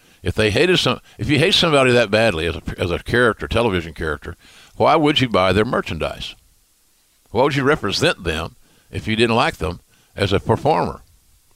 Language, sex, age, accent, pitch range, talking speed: English, male, 60-79, American, 95-130 Hz, 180 wpm